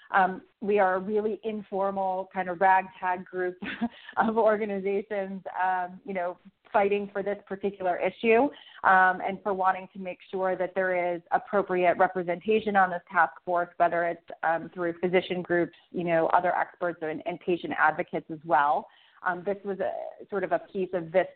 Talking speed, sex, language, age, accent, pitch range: 170 wpm, female, English, 30-49, American, 175-225 Hz